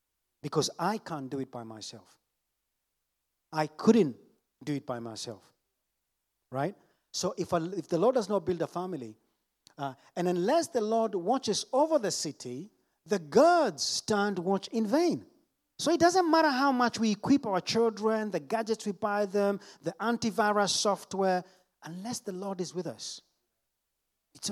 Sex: male